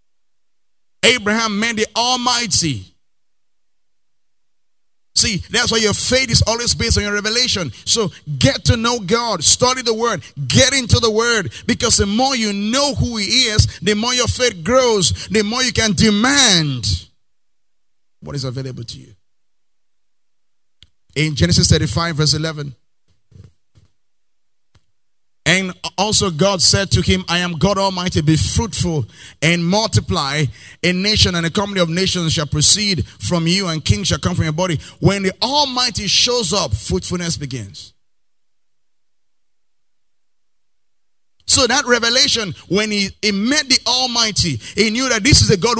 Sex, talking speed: male, 145 wpm